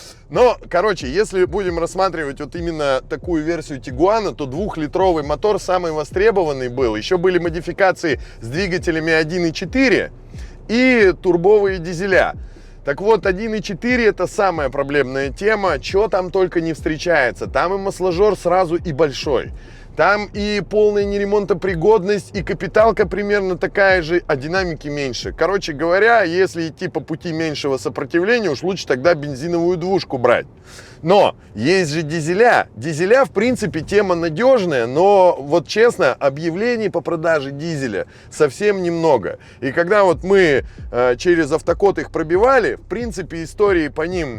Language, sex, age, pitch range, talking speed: Russian, male, 20-39, 155-200 Hz, 135 wpm